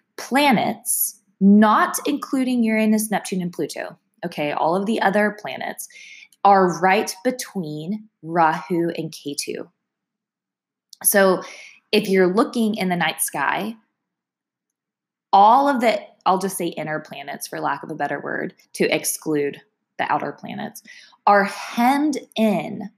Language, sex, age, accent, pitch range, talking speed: English, female, 20-39, American, 175-225 Hz, 130 wpm